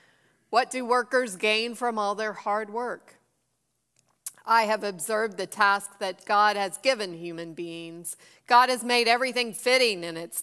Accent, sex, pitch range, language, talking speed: American, female, 190-235 Hz, English, 155 wpm